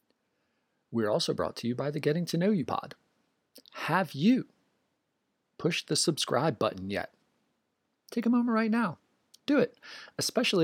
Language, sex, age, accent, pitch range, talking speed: English, male, 30-49, American, 120-185 Hz, 150 wpm